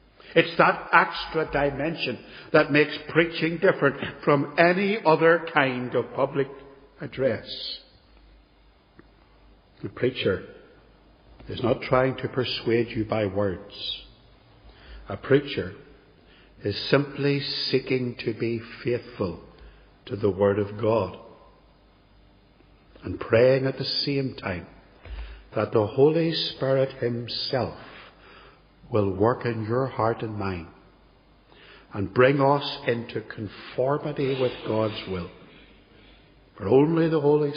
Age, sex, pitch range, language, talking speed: 60-79, male, 105-145 Hz, English, 110 wpm